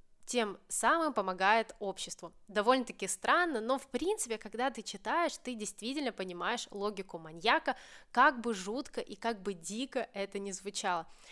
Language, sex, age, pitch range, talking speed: Russian, female, 20-39, 195-265 Hz, 145 wpm